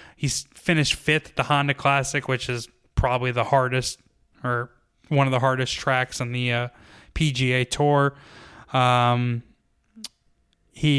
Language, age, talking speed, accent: English, 20-39, 135 wpm, American